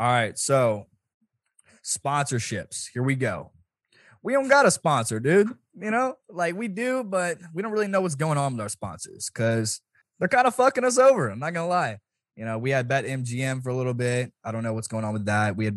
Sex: male